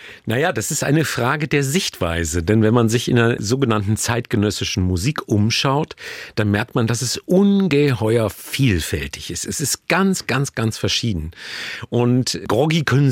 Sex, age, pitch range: male, 50-69, 100-130 Hz